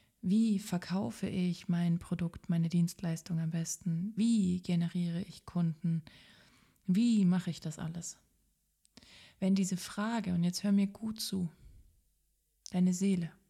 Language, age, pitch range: German, 30-49, 175-205 Hz